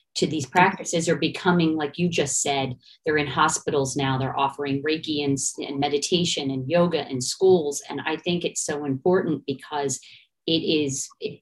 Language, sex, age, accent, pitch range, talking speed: English, female, 40-59, American, 145-180 Hz, 175 wpm